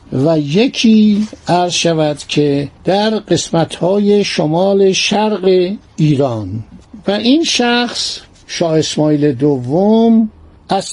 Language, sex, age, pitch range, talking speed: Persian, male, 60-79, 160-220 Hz, 95 wpm